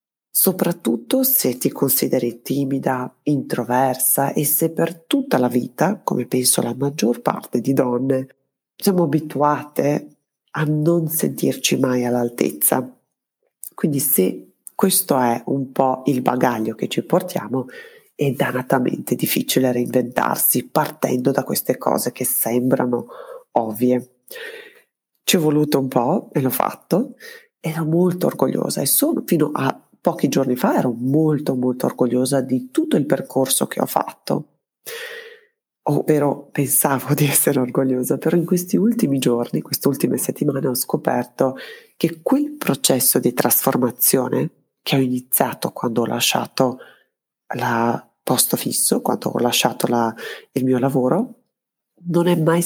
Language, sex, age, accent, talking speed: Italian, female, 30-49, native, 130 wpm